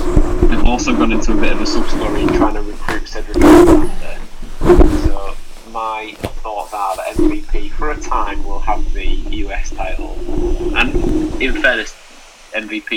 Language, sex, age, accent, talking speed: English, male, 20-39, British, 145 wpm